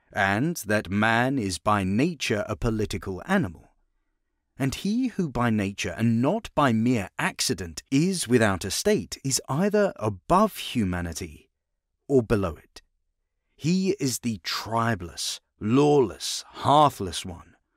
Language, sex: English, male